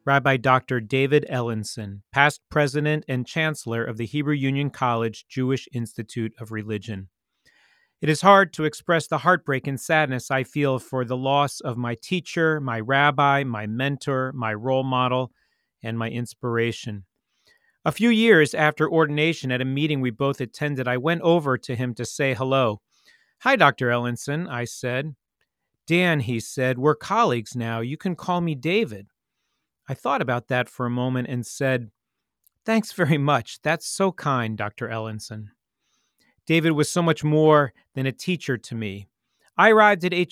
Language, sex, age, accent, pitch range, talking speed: English, male, 40-59, American, 125-155 Hz, 160 wpm